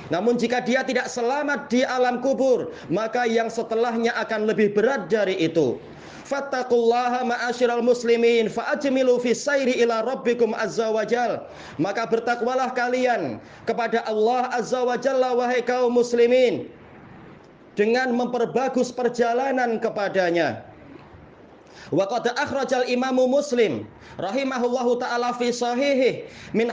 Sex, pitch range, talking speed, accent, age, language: male, 235-260 Hz, 105 wpm, native, 30-49, Indonesian